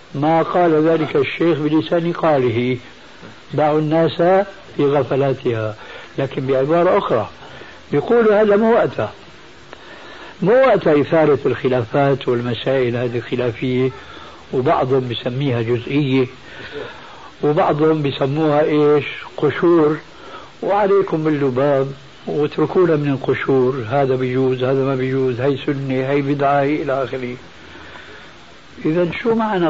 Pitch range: 130-165 Hz